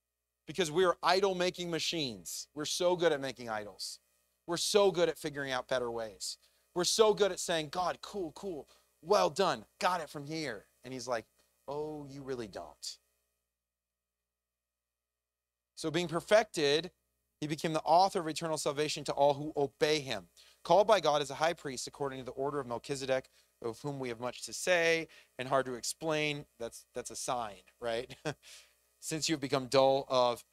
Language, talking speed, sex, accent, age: English, 175 wpm, male, American, 30-49